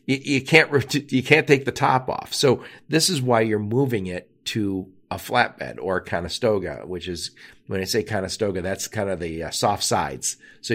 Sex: male